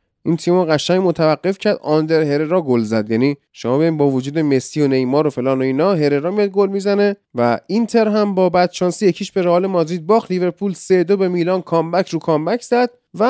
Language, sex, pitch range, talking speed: Persian, male, 150-195 Hz, 210 wpm